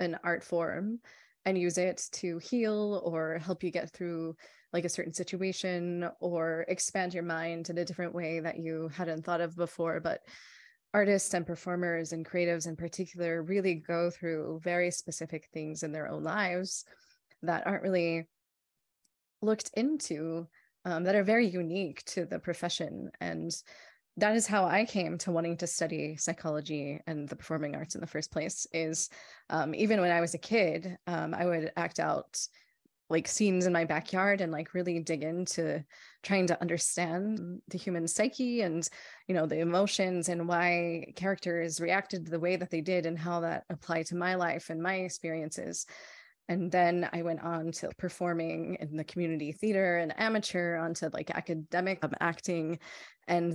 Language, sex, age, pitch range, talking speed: English, female, 20-39, 165-185 Hz, 170 wpm